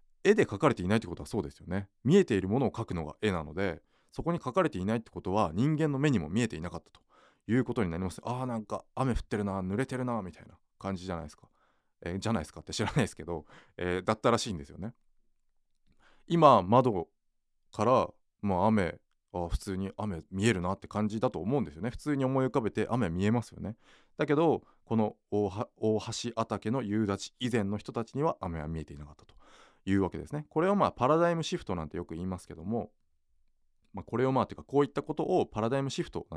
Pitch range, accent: 85-120 Hz, native